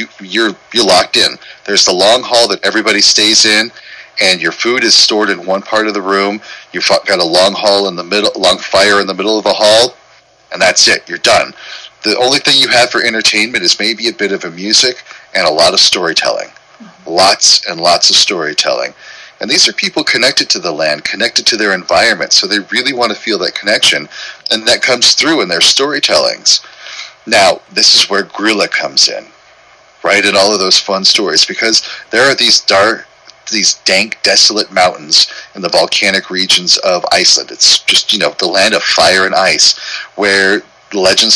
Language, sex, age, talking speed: English, male, 30-49, 195 wpm